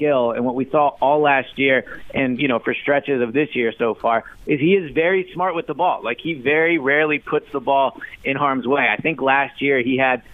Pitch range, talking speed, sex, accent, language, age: 130-160 Hz, 240 wpm, male, American, English, 30-49